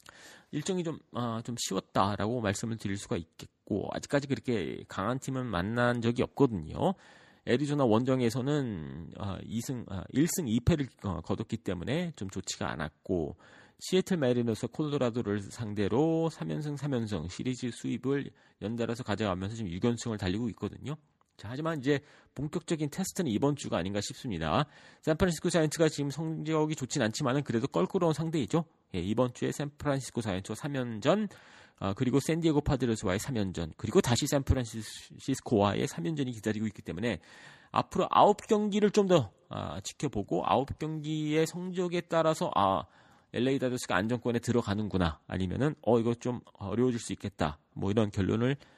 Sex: male